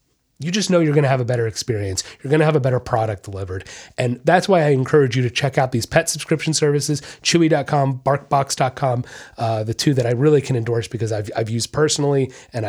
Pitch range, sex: 115-155 Hz, male